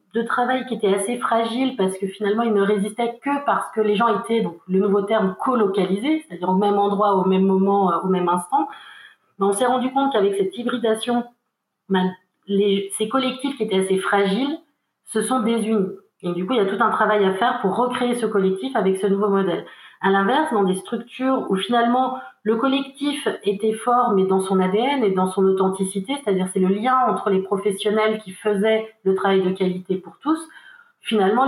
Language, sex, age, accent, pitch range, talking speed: French, female, 30-49, French, 195-240 Hz, 200 wpm